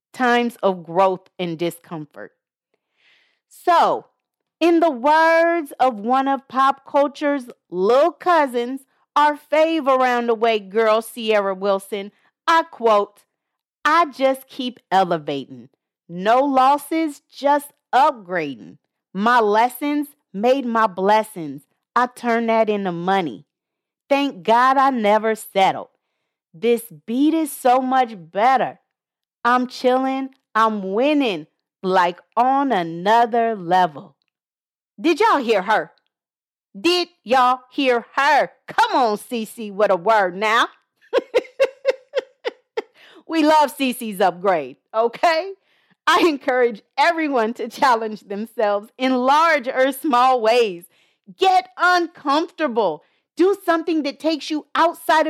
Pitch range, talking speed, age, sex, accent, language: 215-310 Hz, 110 wpm, 40-59, female, American, English